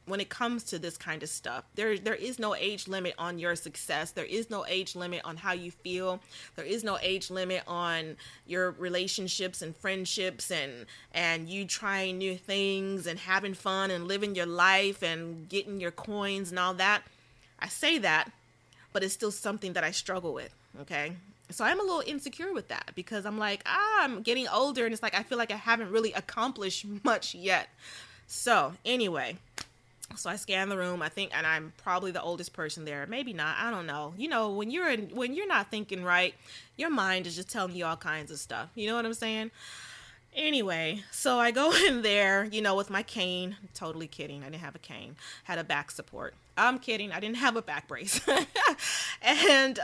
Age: 20-39